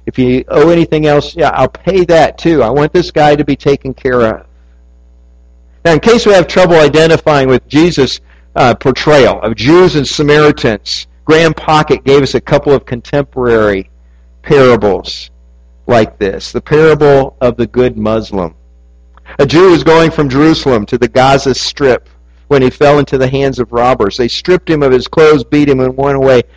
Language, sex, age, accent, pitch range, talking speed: English, male, 50-69, American, 100-150 Hz, 180 wpm